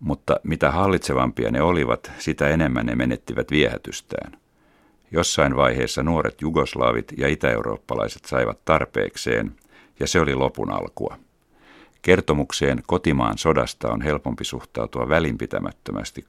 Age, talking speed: 60-79, 110 wpm